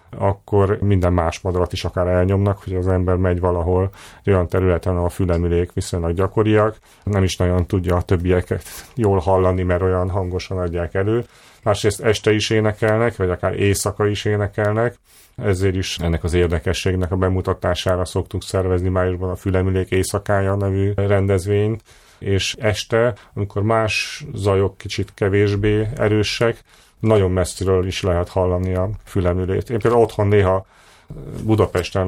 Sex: male